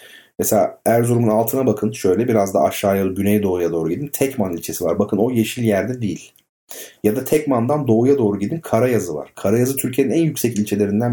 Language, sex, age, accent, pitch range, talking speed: Turkish, male, 40-59, native, 105-135 Hz, 175 wpm